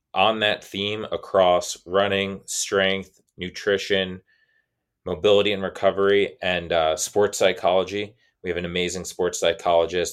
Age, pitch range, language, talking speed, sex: 20-39, 85-100 Hz, English, 120 wpm, male